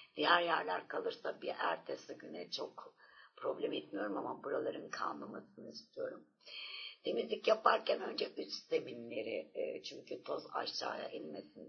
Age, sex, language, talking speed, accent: 60-79, female, Turkish, 115 wpm, native